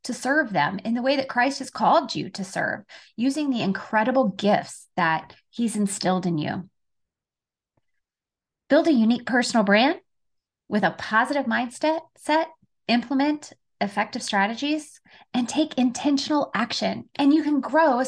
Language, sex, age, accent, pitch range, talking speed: English, female, 20-39, American, 190-275 Hz, 145 wpm